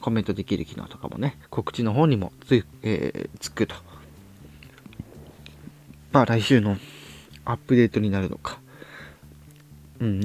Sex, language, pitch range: male, Japanese, 85-120 Hz